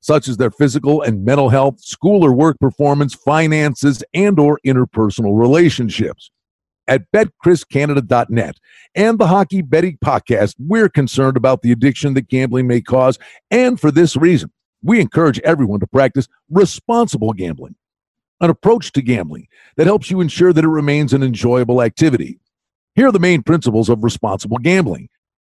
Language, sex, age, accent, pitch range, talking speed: English, male, 50-69, American, 125-175 Hz, 155 wpm